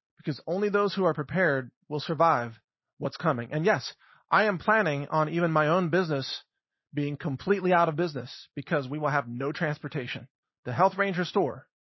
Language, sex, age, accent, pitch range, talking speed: English, male, 40-59, American, 145-185 Hz, 175 wpm